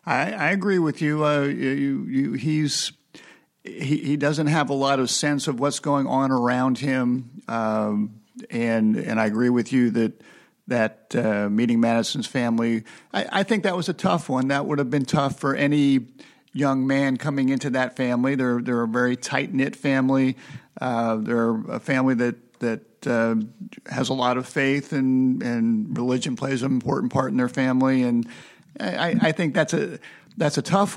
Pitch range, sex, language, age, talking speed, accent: 125-155 Hz, male, English, 50-69, 185 wpm, American